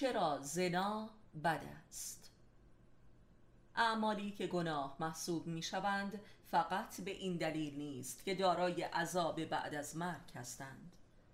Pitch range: 155-185 Hz